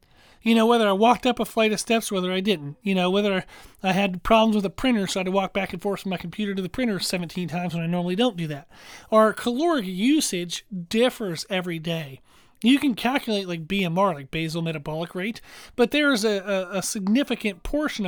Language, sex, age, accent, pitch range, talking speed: English, male, 40-59, American, 180-235 Hz, 220 wpm